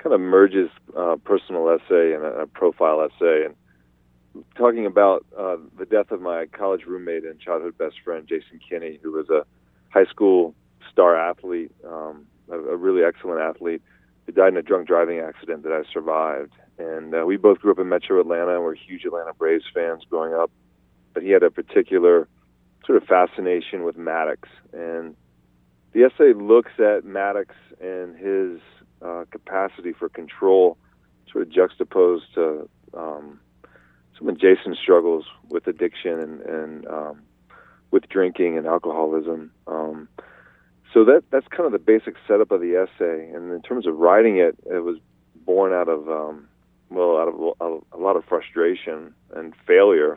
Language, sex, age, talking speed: English, male, 40-59, 165 wpm